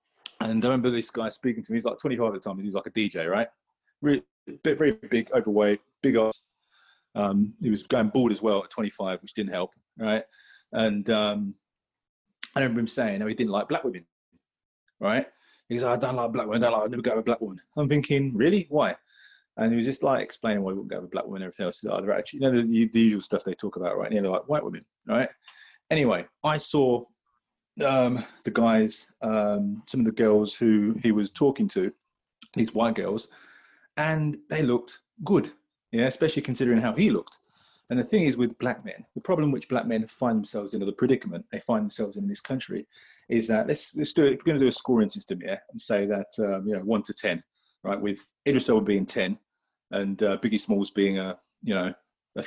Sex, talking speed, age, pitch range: male, 230 wpm, 20-39, 105-135 Hz